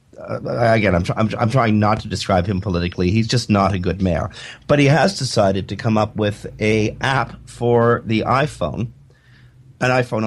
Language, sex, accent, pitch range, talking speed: English, male, American, 100-130 Hz, 180 wpm